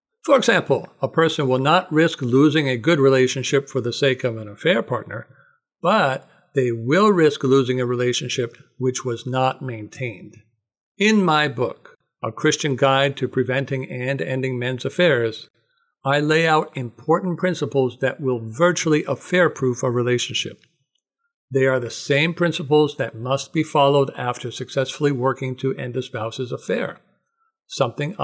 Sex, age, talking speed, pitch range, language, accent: male, 60-79, 150 wpm, 130-160 Hz, English, American